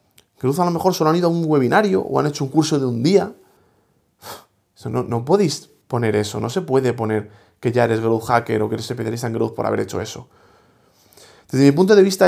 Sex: male